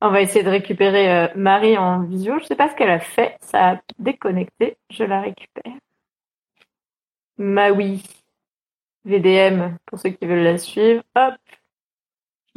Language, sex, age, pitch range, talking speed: French, female, 30-49, 195-255 Hz, 160 wpm